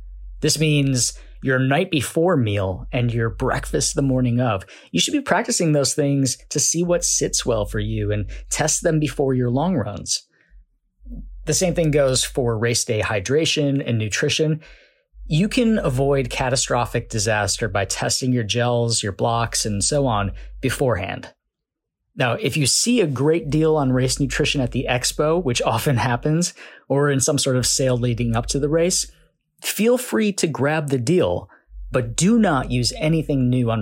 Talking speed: 170 wpm